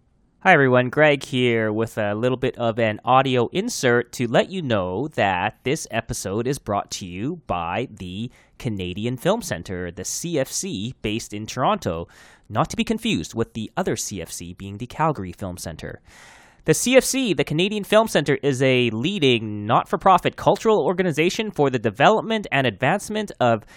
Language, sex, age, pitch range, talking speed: English, male, 20-39, 110-165 Hz, 165 wpm